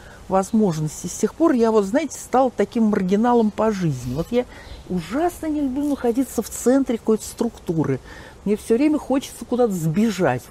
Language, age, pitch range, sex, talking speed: Russian, 50-69, 185-240 Hz, male, 160 wpm